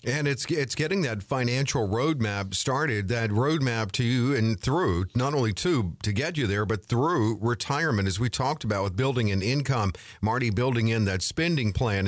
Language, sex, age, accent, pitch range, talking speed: English, male, 50-69, American, 110-140 Hz, 190 wpm